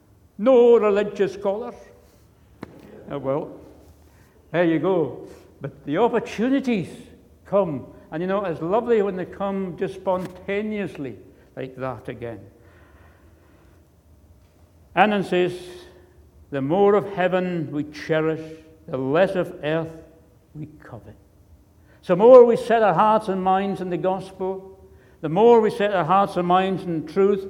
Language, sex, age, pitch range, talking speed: English, male, 60-79, 160-210 Hz, 130 wpm